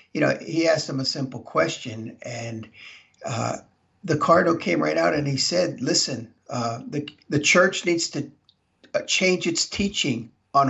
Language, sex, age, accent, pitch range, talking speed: English, male, 50-69, American, 125-160 Hz, 165 wpm